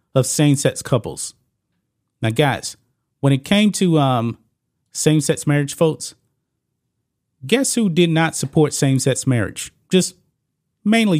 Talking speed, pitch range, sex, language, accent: 120 wpm, 125-160 Hz, male, English, American